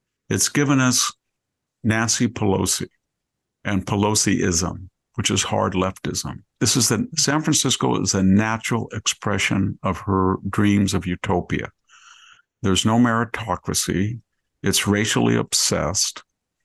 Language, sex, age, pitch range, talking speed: English, male, 50-69, 95-115 Hz, 110 wpm